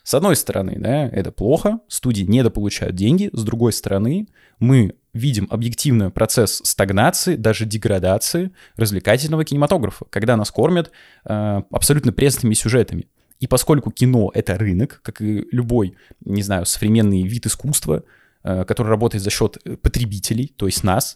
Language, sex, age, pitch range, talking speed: Russian, male, 20-39, 105-145 Hz, 140 wpm